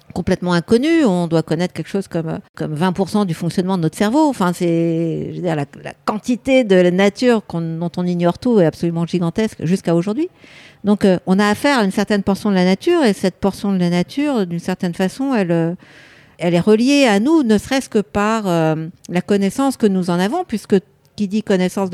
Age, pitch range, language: 60-79, 175-220 Hz, French